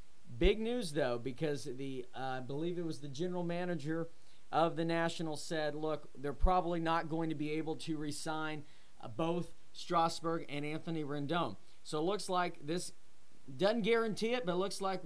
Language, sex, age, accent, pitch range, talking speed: English, male, 40-59, American, 150-180 Hz, 175 wpm